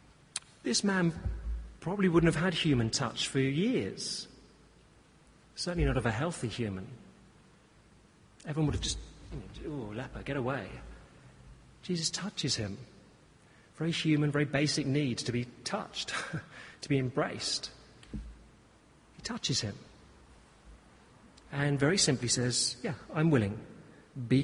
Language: English